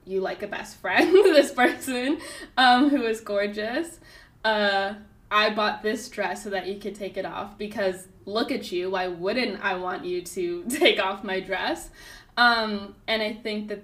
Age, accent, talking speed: 10-29, American, 180 wpm